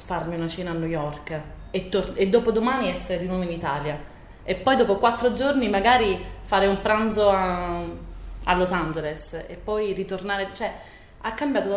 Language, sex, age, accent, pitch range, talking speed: Italian, female, 20-39, native, 155-200 Hz, 180 wpm